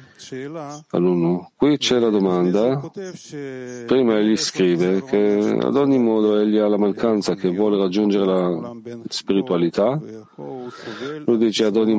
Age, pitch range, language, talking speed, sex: 40-59, 100-130 Hz, Italian, 125 wpm, male